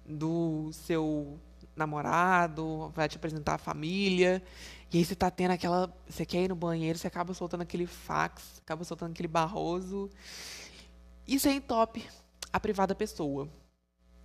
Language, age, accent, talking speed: Portuguese, 20-39, Brazilian, 145 wpm